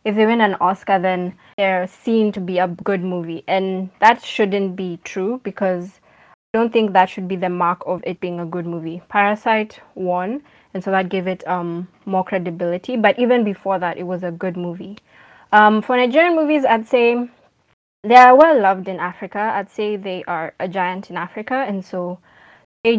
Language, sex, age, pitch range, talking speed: English, female, 20-39, 185-215 Hz, 195 wpm